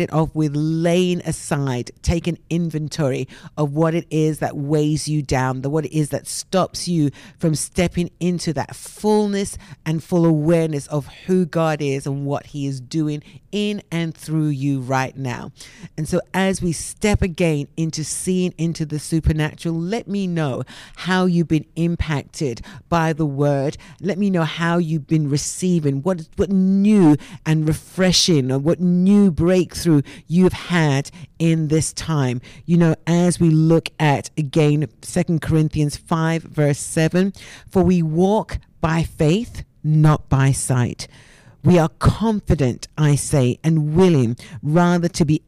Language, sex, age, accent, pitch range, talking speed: English, female, 50-69, British, 145-175 Hz, 155 wpm